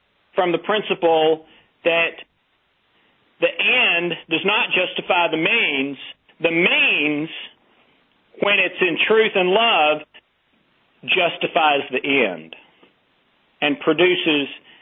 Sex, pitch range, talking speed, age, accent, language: male, 155-190 Hz, 95 wpm, 50-69, American, English